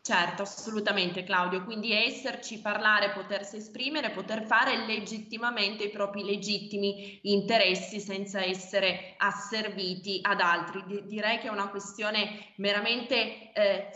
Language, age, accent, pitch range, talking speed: Italian, 20-39, native, 195-225 Hz, 120 wpm